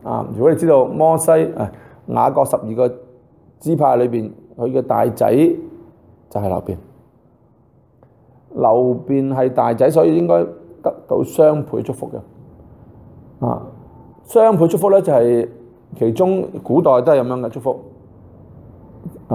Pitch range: 120-165 Hz